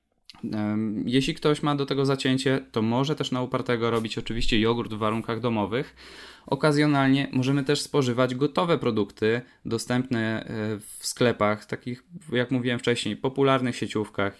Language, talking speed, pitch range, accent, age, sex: Polish, 135 wpm, 105-130 Hz, native, 20-39, male